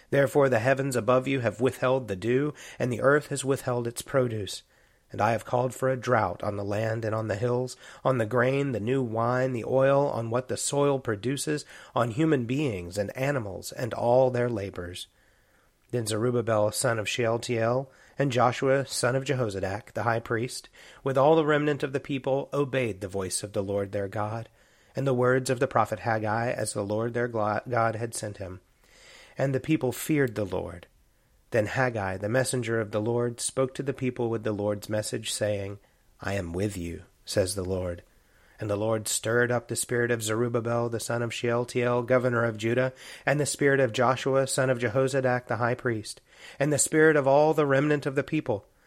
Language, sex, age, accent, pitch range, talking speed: English, male, 30-49, American, 105-130 Hz, 200 wpm